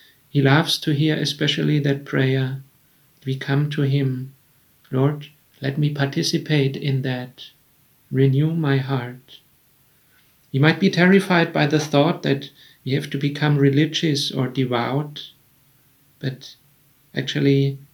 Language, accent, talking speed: English, German, 125 wpm